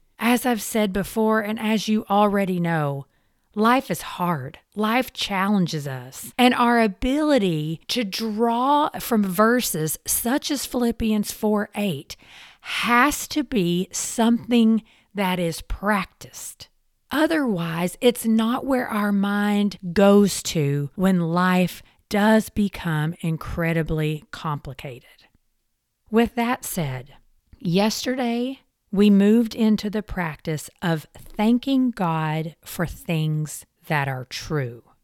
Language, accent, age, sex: English, American, 40-59, female